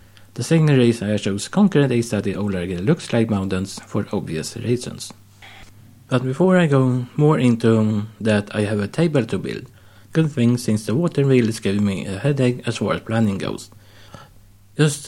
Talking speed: 185 wpm